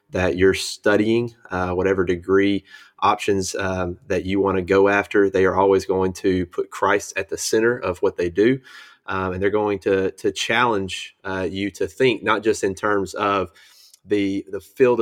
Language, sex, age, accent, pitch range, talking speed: English, male, 30-49, American, 95-105 Hz, 190 wpm